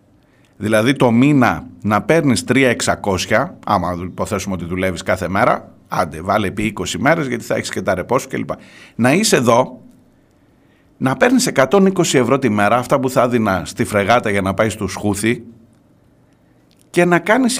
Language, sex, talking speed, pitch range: Greek, male, 165 wpm, 100-140 Hz